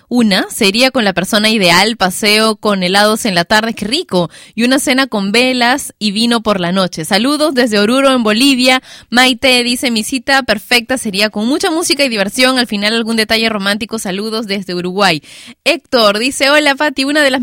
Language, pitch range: Spanish, 205-260 Hz